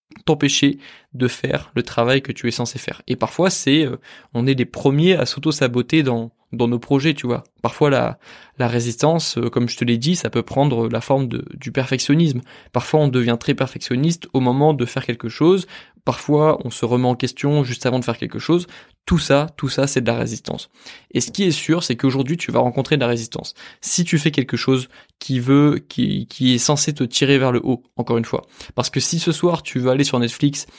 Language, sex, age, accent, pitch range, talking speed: French, male, 20-39, French, 120-145 Hz, 230 wpm